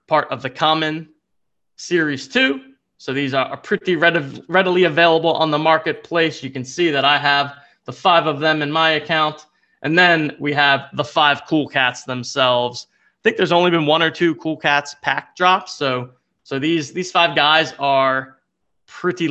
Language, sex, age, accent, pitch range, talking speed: English, male, 20-39, American, 140-175 Hz, 180 wpm